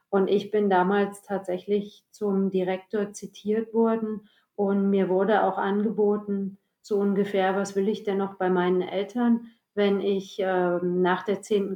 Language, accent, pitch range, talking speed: German, German, 185-210 Hz, 155 wpm